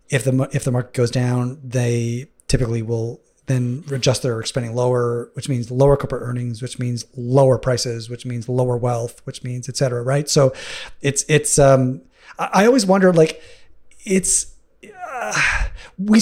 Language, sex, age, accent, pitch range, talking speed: English, male, 30-49, American, 120-140 Hz, 160 wpm